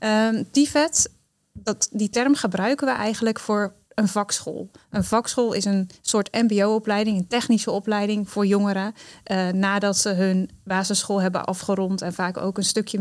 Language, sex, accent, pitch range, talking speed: Dutch, female, Dutch, 190-220 Hz, 150 wpm